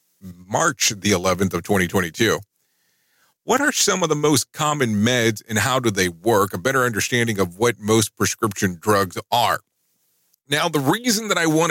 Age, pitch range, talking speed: 40-59, 105-145 Hz, 170 wpm